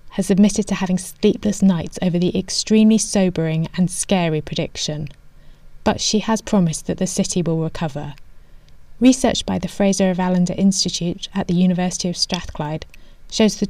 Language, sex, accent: English, female, British